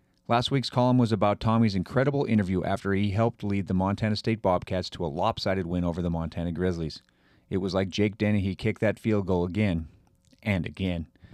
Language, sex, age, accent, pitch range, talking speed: English, male, 30-49, American, 95-115 Hz, 190 wpm